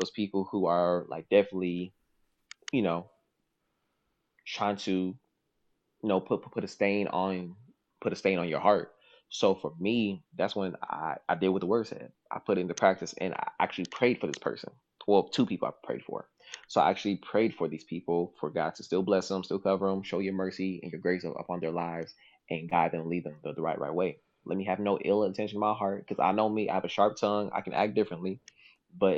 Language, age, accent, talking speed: English, 20-39, American, 230 wpm